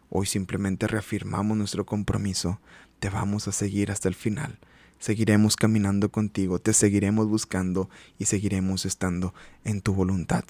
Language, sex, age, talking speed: Spanish, male, 20-39, 135 wpm